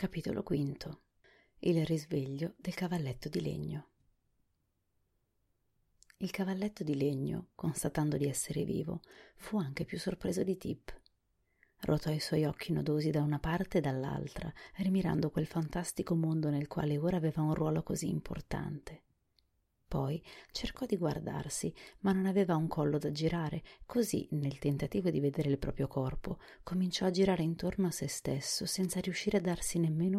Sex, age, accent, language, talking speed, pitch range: female, 30-49, native, Italian, 145 wpm, 140-185 Hz